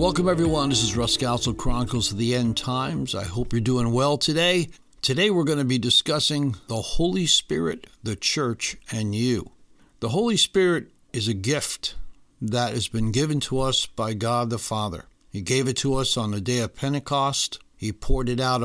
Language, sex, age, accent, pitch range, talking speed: English, male, 60-79, American, 115-140 Hz, 195 wpm